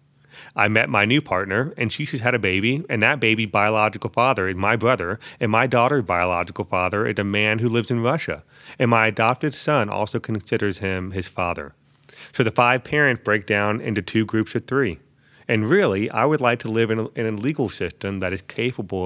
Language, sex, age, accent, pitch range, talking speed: English, male, 30-49, American, 95-130 Hz, 210 wpm